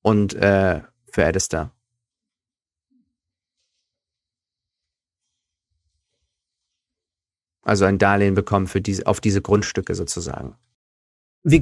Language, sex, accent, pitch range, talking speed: German, male, German, 95-110 Hz, 75 wpm